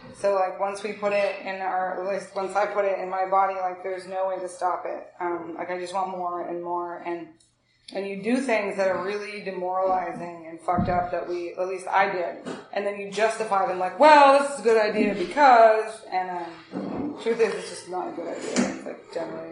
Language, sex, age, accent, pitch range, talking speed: English, female, 20-39, American, 180-205 Hz, 230 wpm